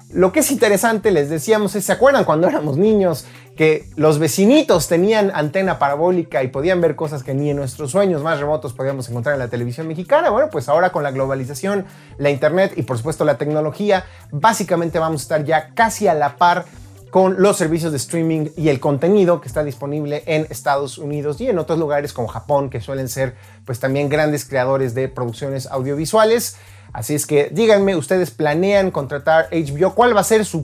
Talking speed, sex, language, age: 195 wpm, male, Spanish, 30-49